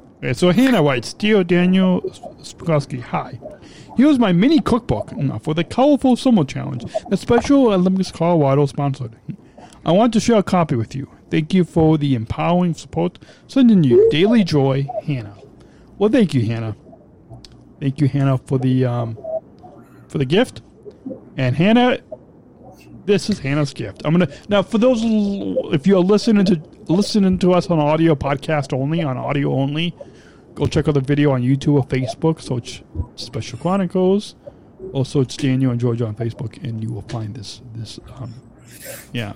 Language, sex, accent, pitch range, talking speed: English, male, American, 125-180 Hz, 165 wpm